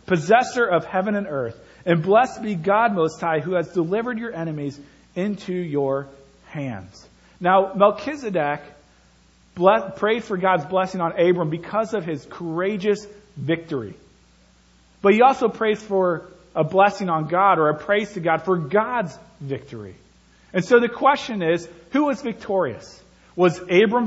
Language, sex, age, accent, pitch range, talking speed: English, male, 40-59, American, 150-205 Hz, 145 wpm